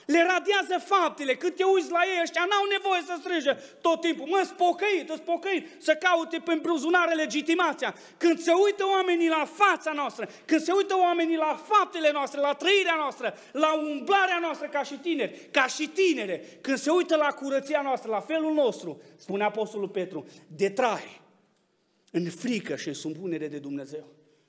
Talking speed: 170 wpm